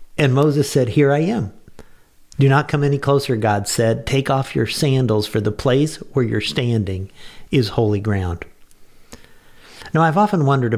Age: 50-69